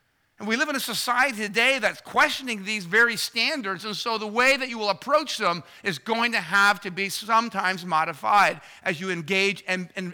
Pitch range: 175-235 Hz